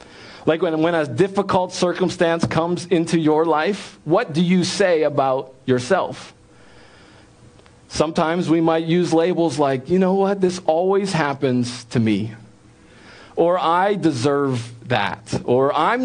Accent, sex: American, male